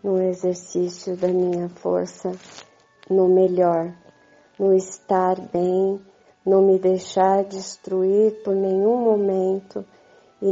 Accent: Brazilian